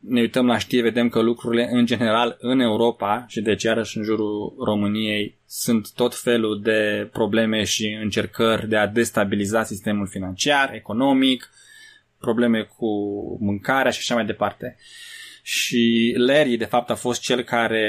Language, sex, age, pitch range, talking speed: Romanian, male, 20-39, 110-135 Hz, 150 wpm